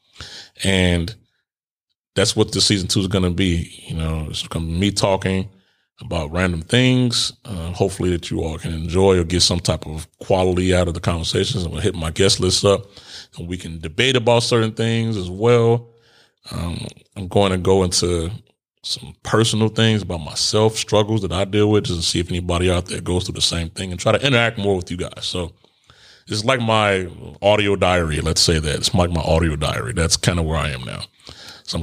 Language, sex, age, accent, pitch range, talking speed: English, male, 30-49, American, 85-105 Hz, 215 wpm